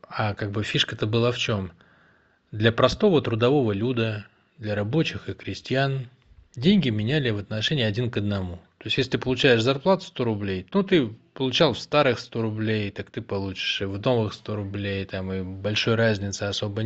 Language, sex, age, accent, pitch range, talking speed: Russian, male, 20-39, native, 100-130 Hz, 180 wpm